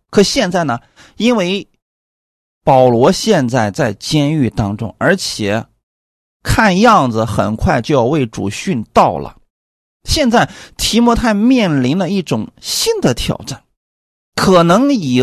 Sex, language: male, Chinese